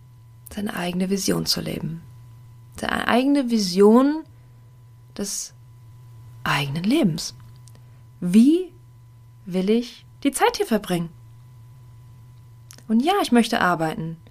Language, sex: German, female